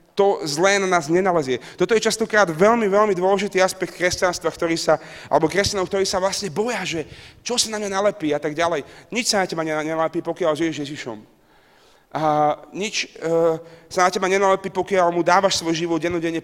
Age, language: 30-49, Slovak